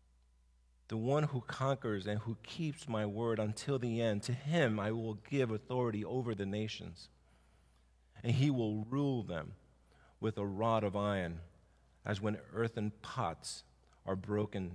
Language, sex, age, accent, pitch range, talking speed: English, male, 50-69, American, 85-115 Hz, 150 wpm